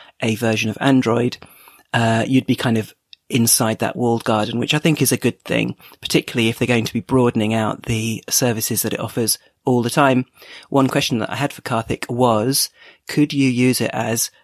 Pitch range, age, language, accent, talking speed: 115-130 Hz, 40-59, English, British, 205 wpm